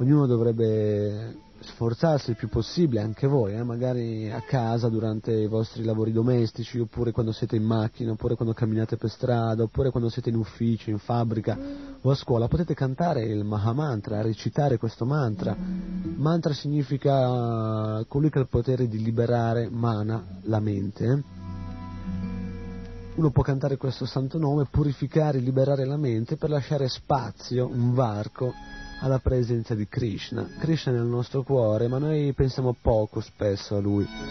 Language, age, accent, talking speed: Italian, 30-49, native, 150 wpm